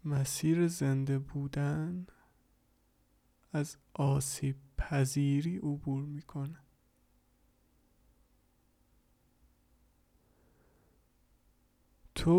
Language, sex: English, male